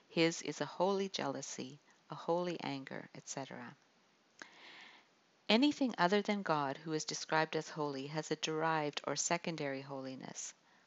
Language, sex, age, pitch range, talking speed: English, female, 50-69, 140-180 Hz, 135 wpm